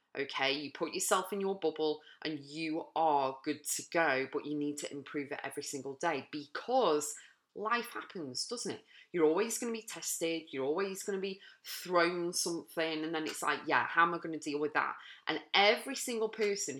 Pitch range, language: 150-180 Hz, English